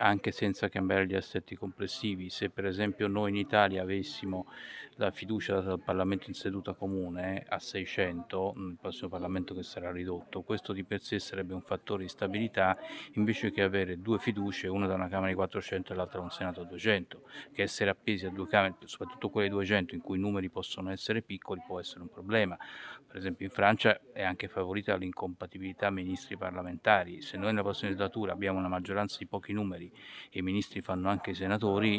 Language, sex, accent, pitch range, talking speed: Italian, male, native, 95-105 Hz, 195 wpm